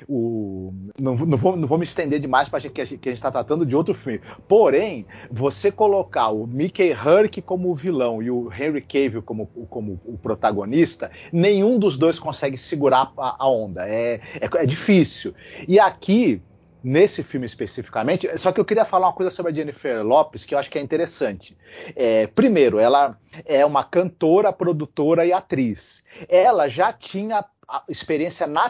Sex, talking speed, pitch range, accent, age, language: male, 175 wpm, 135-185 Hz, Brazilian, 40-59, Portuguese